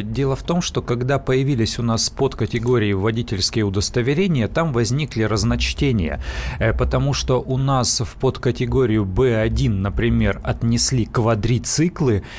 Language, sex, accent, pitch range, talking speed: Russian, male, native, 120-150 Hz, 115 wpm